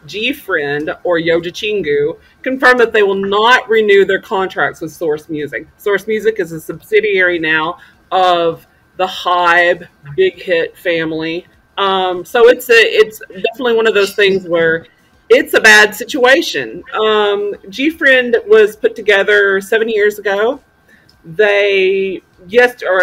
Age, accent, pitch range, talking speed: 40-59, American, 175-245 Hz, 140 wpm